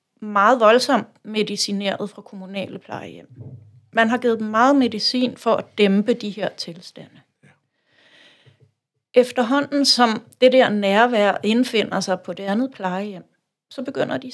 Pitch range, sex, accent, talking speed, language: 200-255 Hz, female, native, 135 wpm, Danish